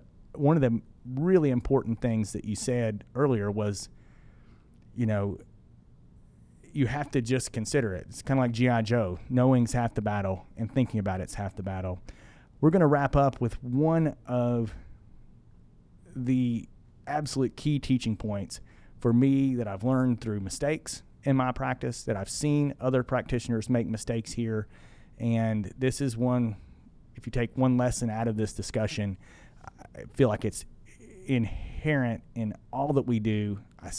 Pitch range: 105-130 Hz